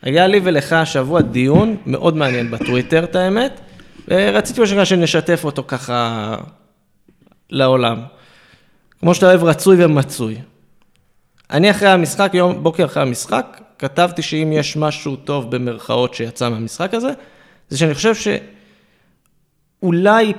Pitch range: 135-185 Hz